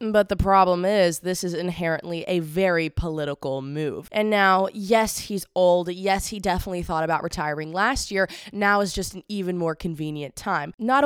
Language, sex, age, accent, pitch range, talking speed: English, female, 20-39, American, 165-205 Hz, 180 wpm